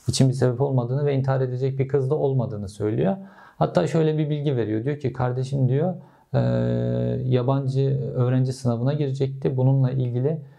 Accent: native